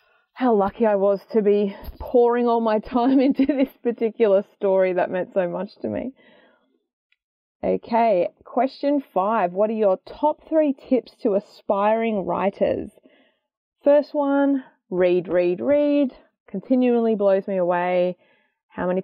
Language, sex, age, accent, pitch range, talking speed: English, female, 20-39, Australian, 180-260 Hz, 135 wpm